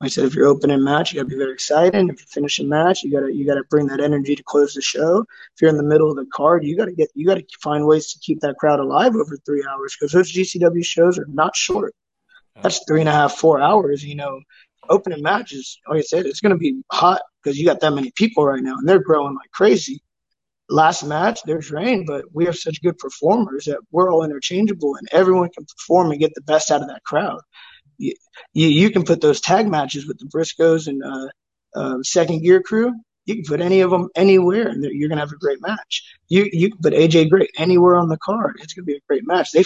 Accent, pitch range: American, 145-190 Hz